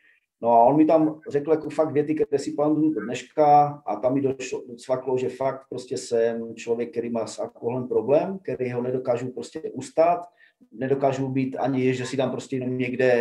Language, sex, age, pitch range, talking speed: Slovak, male, 40-59, 125-155 Hz, 190 wpm